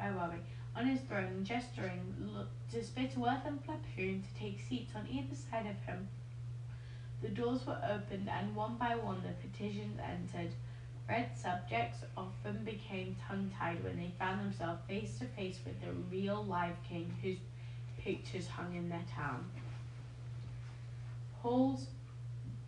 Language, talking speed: English, 140 wpm